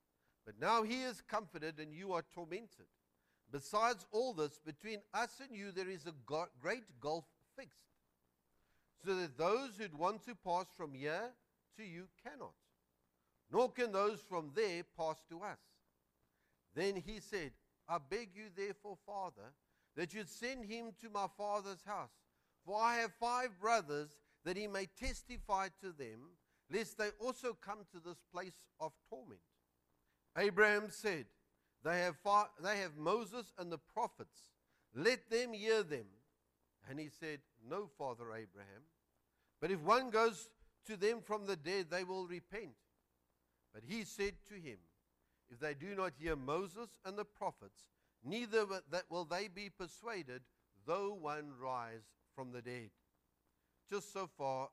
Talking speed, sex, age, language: 150 wpm, male, 50-69, English